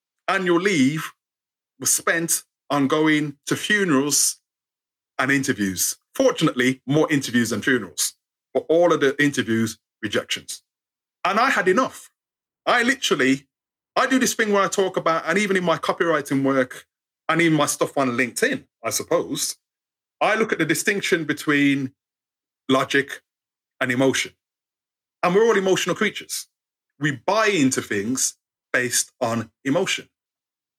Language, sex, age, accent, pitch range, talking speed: English, male, 30-49, British, 135-200 Hz, 135 wpm